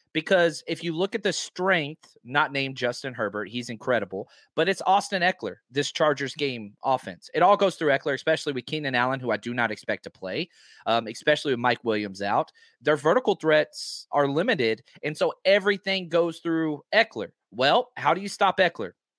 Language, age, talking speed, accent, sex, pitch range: English, 30-49, 190 wpm, American, male, 120-165 Hz